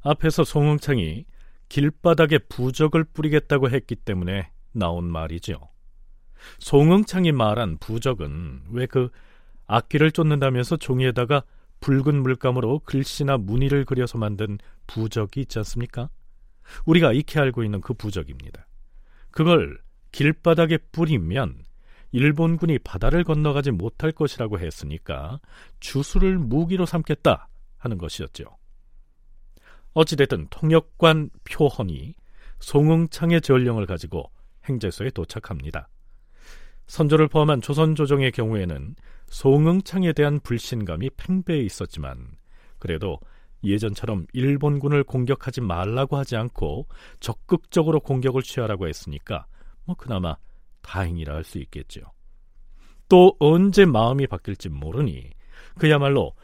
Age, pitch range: 40-59, 100-155 Hz